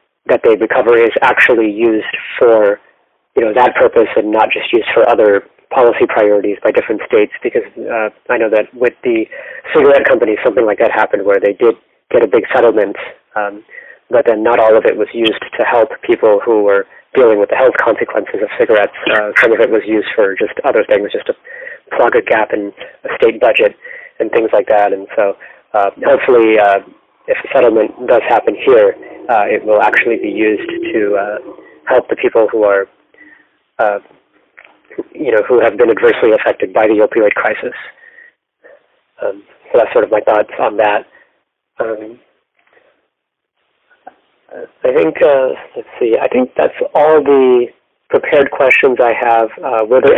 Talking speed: 180 wpm